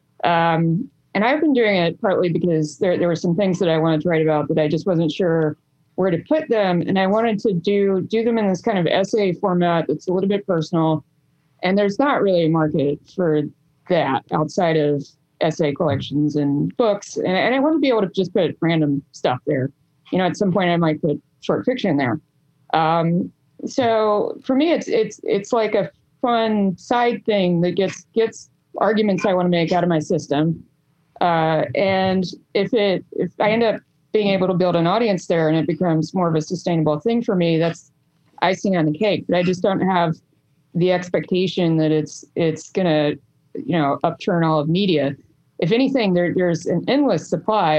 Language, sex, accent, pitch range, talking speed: English, female, American, 155-195 Hz, 200 wpm